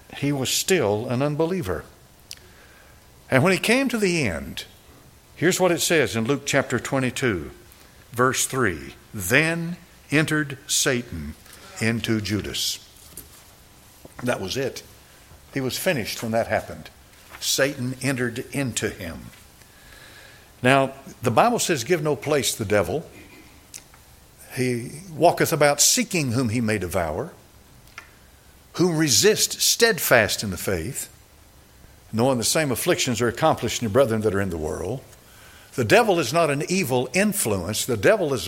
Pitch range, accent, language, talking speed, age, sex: 110-155 Hz, American, English, 135 wpm, 60-79, male